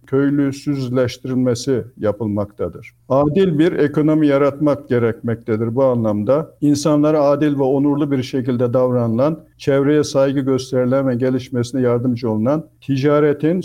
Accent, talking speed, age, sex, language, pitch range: native, 110 wpm, 60-79, male, Turkish, 125-145 Hz